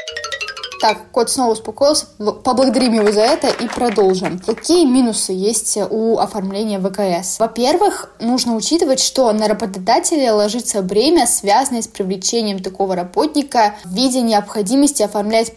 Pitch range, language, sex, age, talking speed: 205-245 Hz, Russian, female, 20-39, 125 wpm